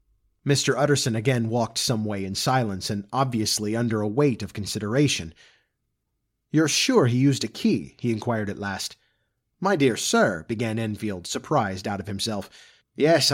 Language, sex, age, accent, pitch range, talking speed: English, male, 30-49, American, 105-140 Hz, 155 wpm